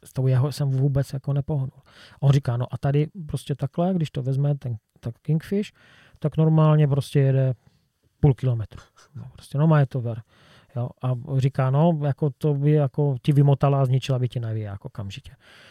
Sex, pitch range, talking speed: male, 125-145 Hz, 195 wpm